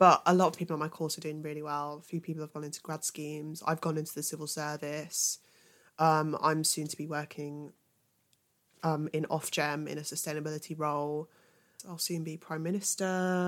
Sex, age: female, 20-39